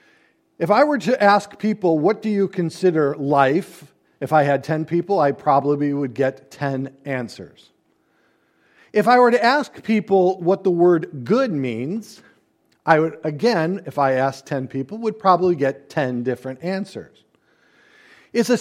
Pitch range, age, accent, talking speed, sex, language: 155-220 Hz, 40-59, American, 160 wpm, male, English